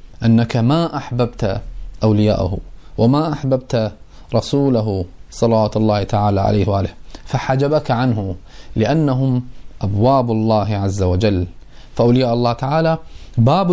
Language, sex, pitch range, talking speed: Arabic, male, 110-140 Hz, 100 wpm